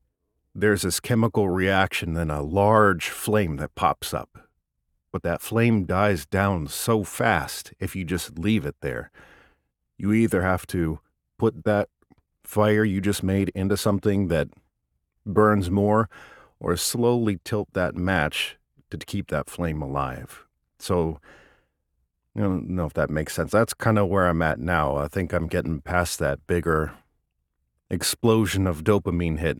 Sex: male